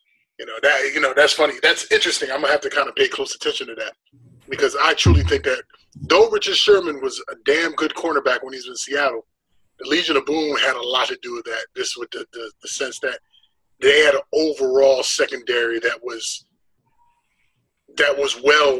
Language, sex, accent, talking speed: English, male, American, 210 wpm